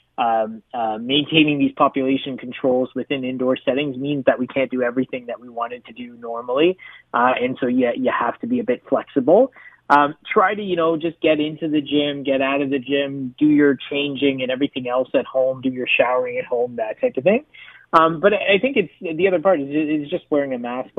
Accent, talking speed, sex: American, 220 wpm, male